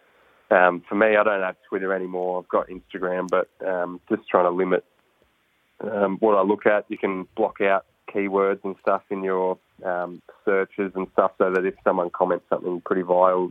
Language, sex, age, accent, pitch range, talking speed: English, male, 20-39, Australian, 90-100 Hz, 190 wpm